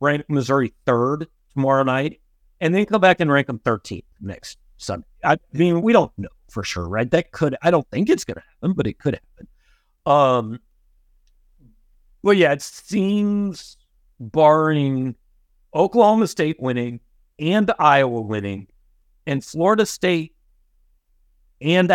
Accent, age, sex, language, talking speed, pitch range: American, 50-69, male, English, 140 wpm, 110-150 Hz